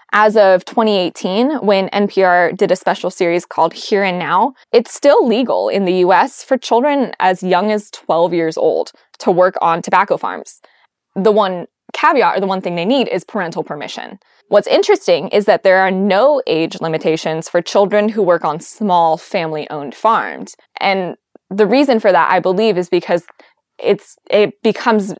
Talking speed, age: 175 wpm, 10-29